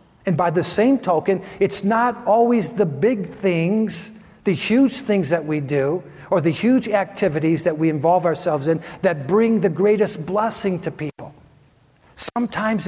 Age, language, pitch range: 50-69, English, 190-245 Hz